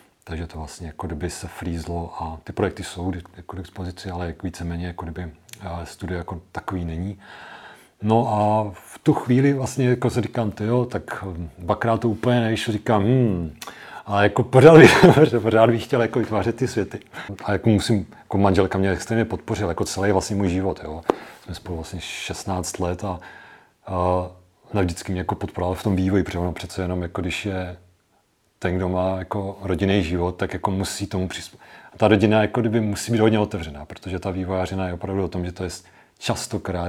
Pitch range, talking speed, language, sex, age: 90-110 Hz, 185 wpm, Czech, male, 40-59